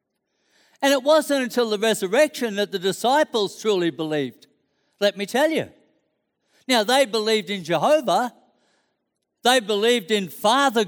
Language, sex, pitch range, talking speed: English, male, 200-260 Hz, 130 wpm